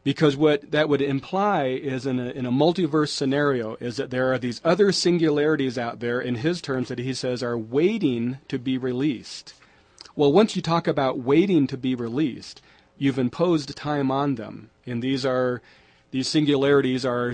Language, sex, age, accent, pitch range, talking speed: English, male, 40-59, American, 120-150 Hz, 175 wpm